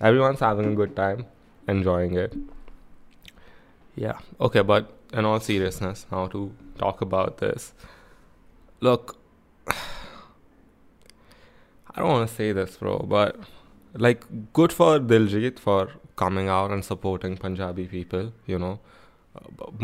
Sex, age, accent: male, 20-39, Indian